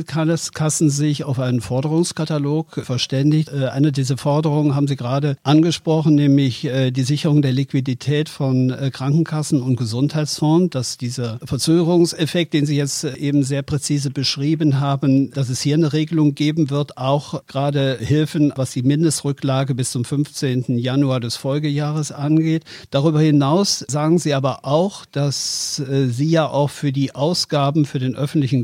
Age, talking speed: 50-69, 145 wpm